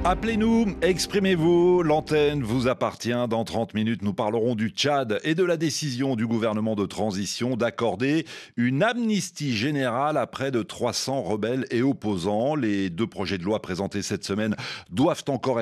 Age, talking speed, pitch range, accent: 40-59, 160 wpm, 105-175 Hz, French